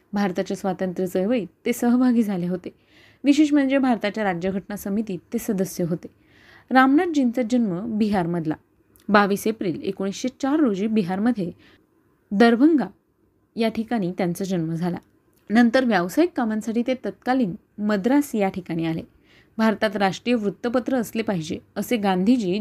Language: Marathi